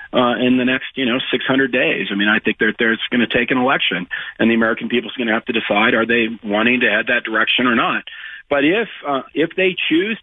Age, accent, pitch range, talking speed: 50-69, American, 125-165 Hz, 260 wpm